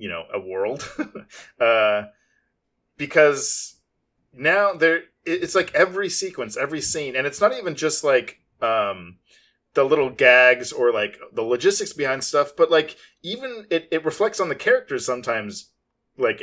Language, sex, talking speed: English, male, 150 wpm